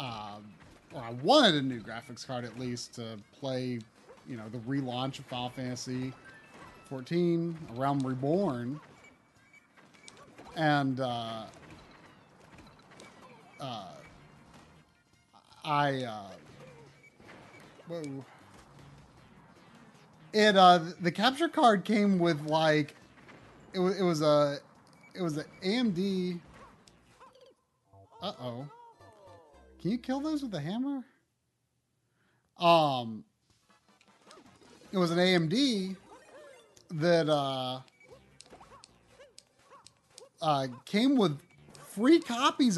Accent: American